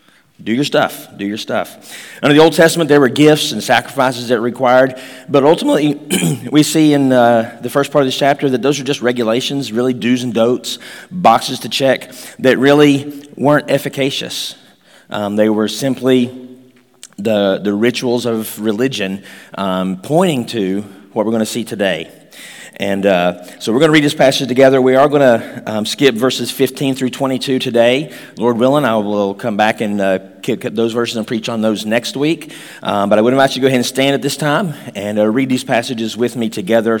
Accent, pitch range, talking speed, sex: American, 110-135 Hz, 200 wpm, male